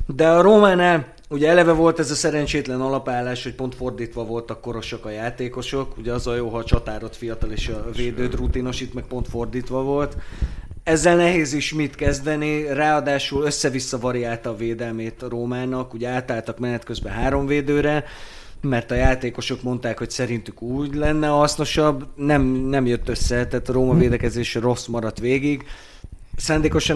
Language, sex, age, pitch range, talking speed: Hungarian, male, 30-49, 115-140 Hz, 160 wpm